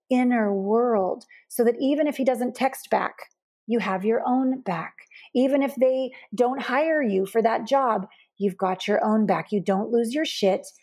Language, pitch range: English, 195-255 Hz